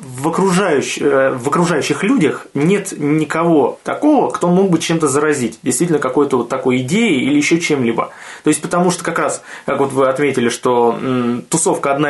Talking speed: 175 wpm